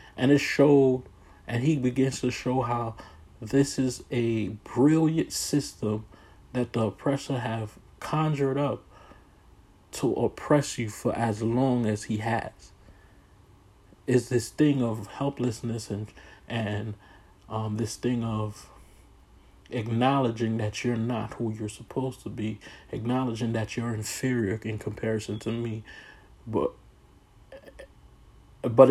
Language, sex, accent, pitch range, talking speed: English, male, American, 110-135 Hz, 120 wpm